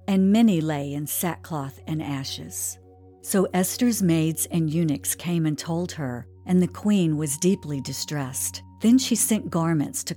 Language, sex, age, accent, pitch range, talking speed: English, female, 50-69, American, 135-185 Hz, 160 wpm